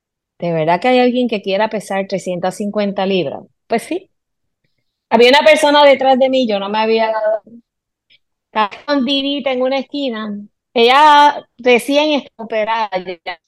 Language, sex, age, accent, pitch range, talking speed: Spanish, female, 20-39, American, 185-235 Hz, 145 wpm